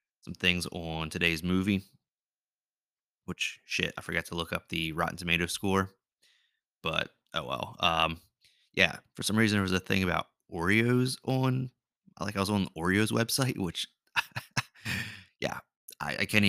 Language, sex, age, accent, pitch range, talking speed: English, male, 30-49, American, 90-110 Hz, 155 wpm